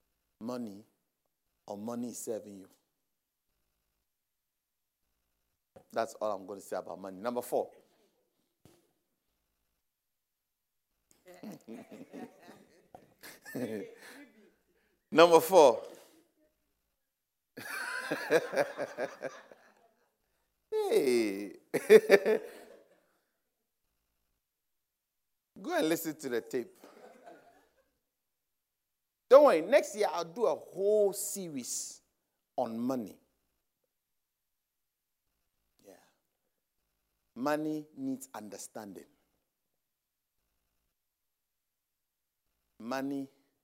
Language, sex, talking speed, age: English, male, 55 wpm, 60-79